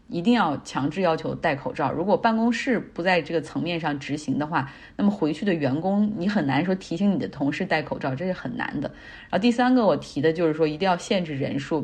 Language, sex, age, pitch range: Chinese, female, 20-39, 150-200 Hz